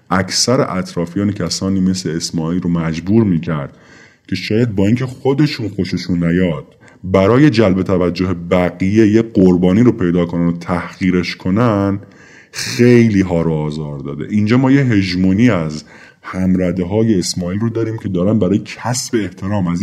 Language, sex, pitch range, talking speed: Persian, male, 90-125 Hz, 145 wpm